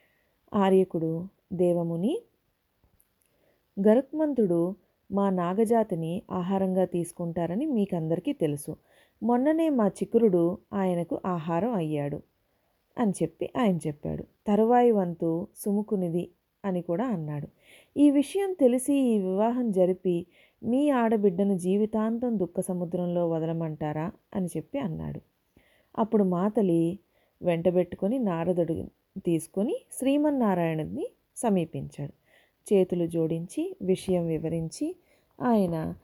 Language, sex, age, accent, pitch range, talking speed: Telugu, female, 30-49, native, 170-230 Hz, 85 wpm